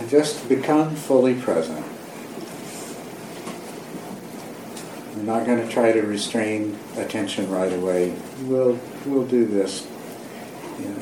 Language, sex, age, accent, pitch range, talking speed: English, male, 60-79, American, 95-125 Hz, 110 wpm